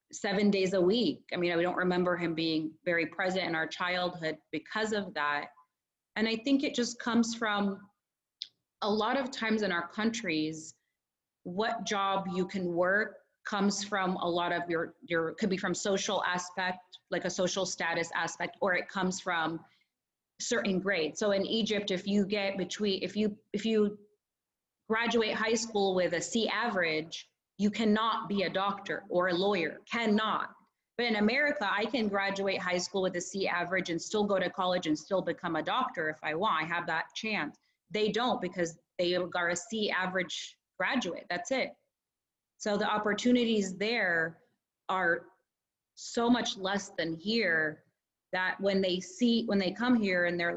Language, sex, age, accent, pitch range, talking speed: English, female, 30-49, American, 175-215 Hz, 175 wpm